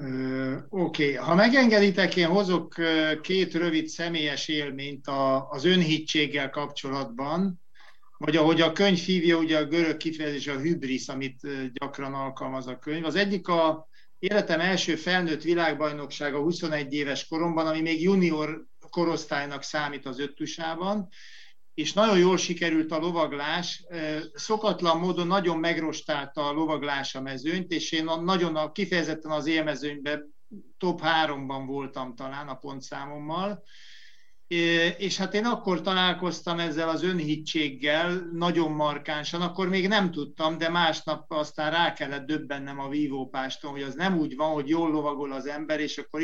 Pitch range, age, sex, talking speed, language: 145-175 Hz, 60-79, male, 140 wpm, Hungarian